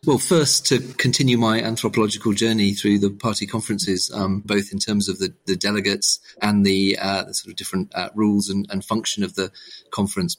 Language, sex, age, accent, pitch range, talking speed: English, male, 40-59, British, 95-105 Hz, 195 wpm